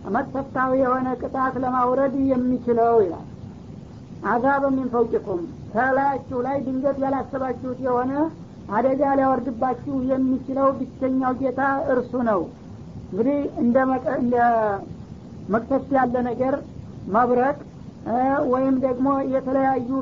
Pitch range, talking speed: 255-270 Hz, 85 wpm